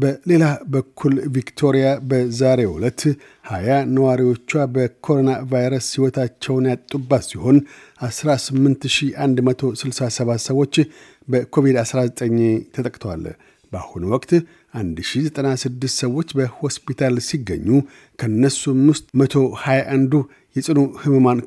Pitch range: 125-140 Hz